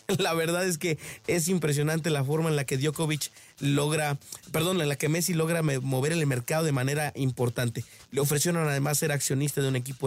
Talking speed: 195 wpm